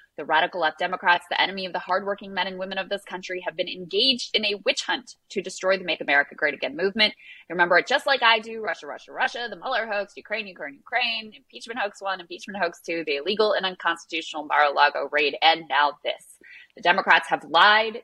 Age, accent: 20-39, American